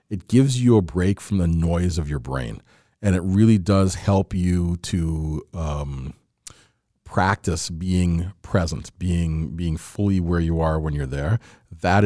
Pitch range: 85-100 Hz